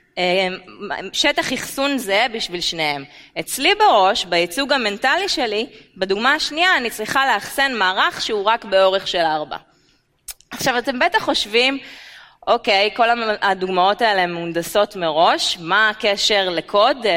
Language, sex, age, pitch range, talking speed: Hebrew, female, 20-39, 180-265 Hz, 120 wpm